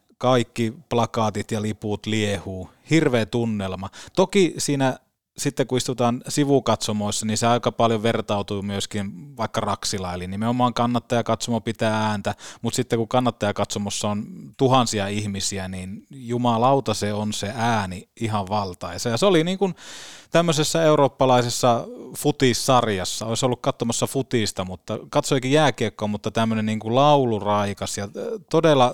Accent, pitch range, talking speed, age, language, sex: native, 105-125 Hz, 130 wpm, 20-39, Finnish, male